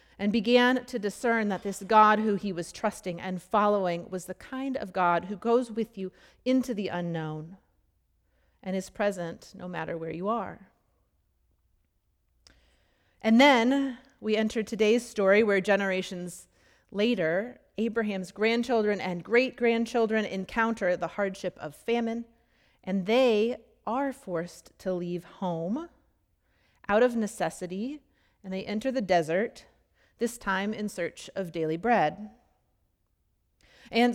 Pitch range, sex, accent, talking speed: 180-230 Hz, female, American, 130 wpm